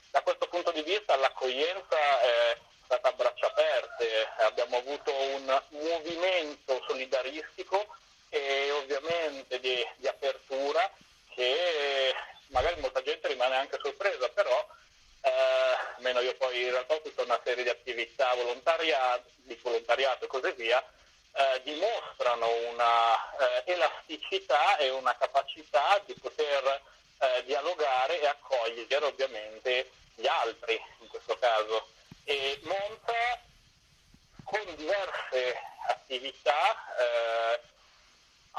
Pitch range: 125-205 Hz